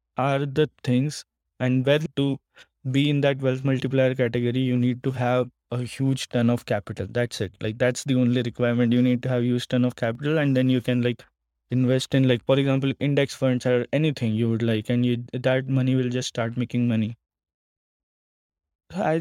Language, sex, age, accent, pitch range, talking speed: English, male, 20-39, Indian, 115-130 Hz, 195 wpm